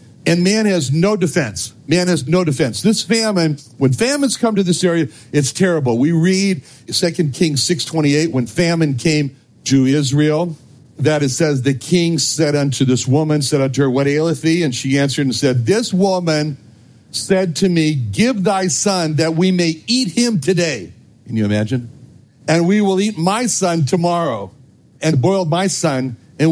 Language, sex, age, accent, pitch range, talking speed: English, male, 60-79, American, 135-185 Hz, 175 wpm